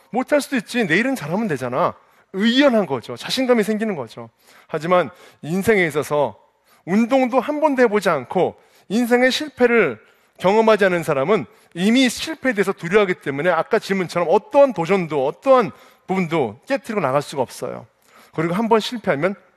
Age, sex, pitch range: 30-49, male, 170-255 Hz